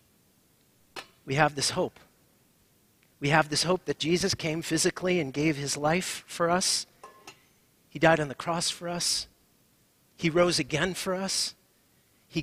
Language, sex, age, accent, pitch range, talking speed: English, male, 40-59, American, 120-160 Hz, 150 wpm